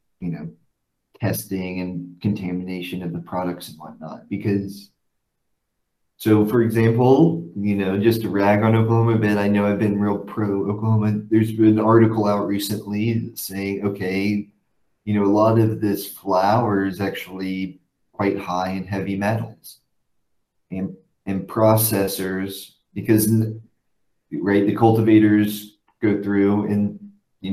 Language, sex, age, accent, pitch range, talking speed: English, male, 30-49, American, 95-110 Hz, 135 wpm